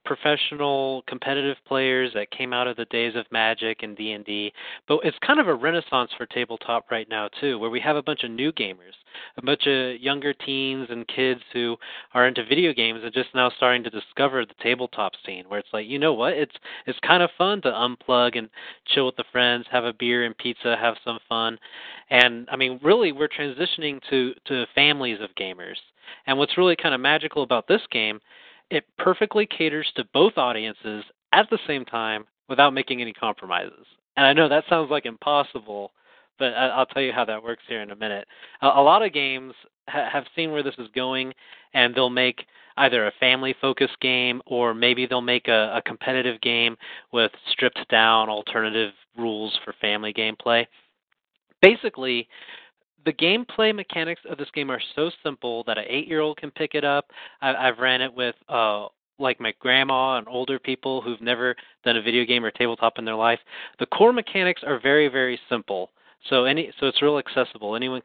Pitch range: 115-140 Hz